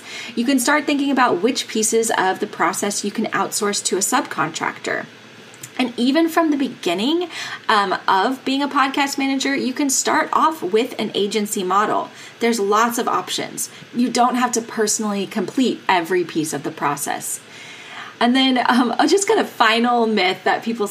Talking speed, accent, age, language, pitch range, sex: 175 wpm, American, 20-39, English, 205-265 Hz, female